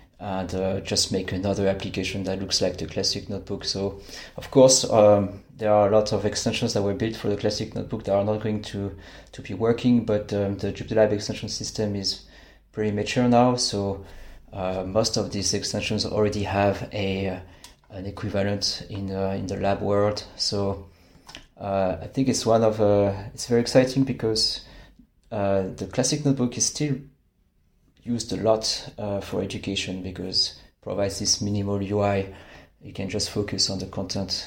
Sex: male